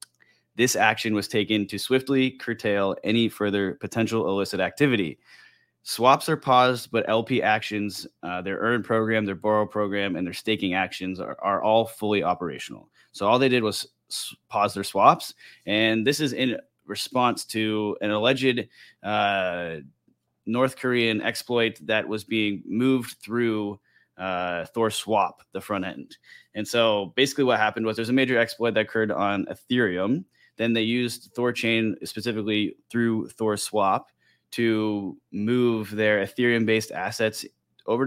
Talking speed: 150 wpm